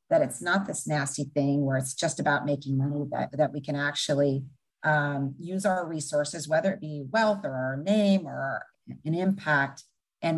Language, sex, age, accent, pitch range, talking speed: English, female, 40-59, American, 145-180 Hz, 190 wpm